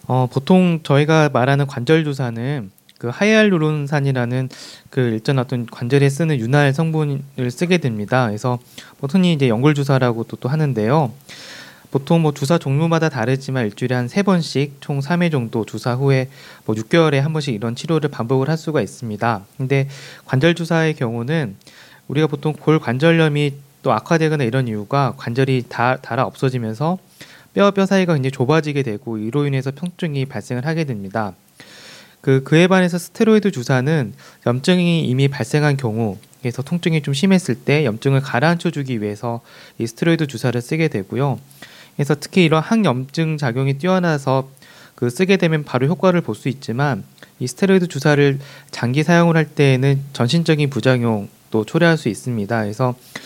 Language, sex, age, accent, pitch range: Korean, male, 30-49, native, 125-160 Hz